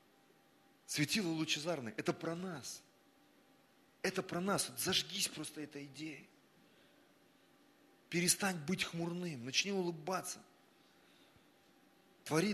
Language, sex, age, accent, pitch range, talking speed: Russian, male, 30-49, native, 130-185 Hz, 90 wpm